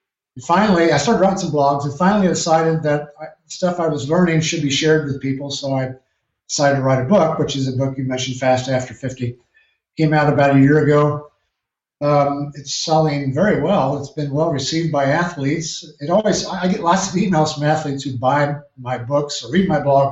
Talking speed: 205 wpm